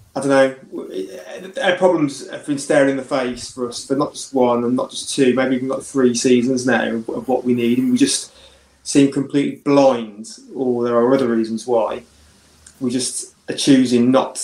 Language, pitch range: English, 120-135 Hz